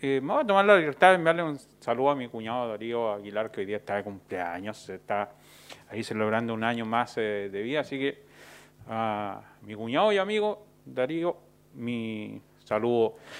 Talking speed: 190 wpm